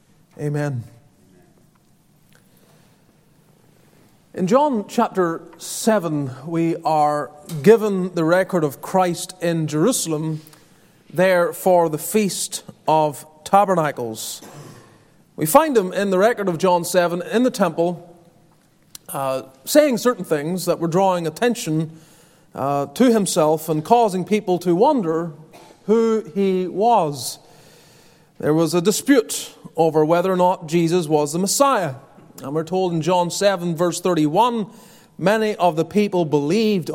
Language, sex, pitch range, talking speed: English, male, 160-205 Hz, 125 wpm